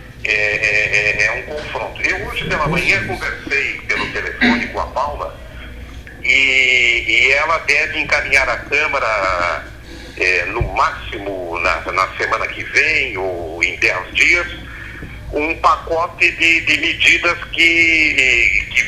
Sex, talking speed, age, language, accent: male, 130 wpm, 60-79, Portuguese, Brazilian